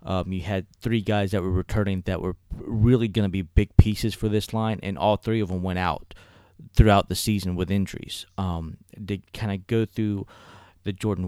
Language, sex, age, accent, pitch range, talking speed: English, male, 20-39, American, 90-105 Hz, 200 wpm